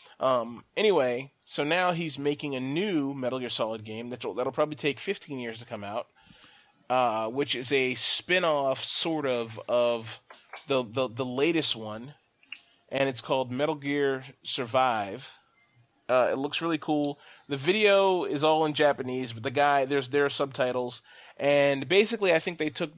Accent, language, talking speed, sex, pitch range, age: American, English, 165 wpm, male, 120-145 Hz, 30-49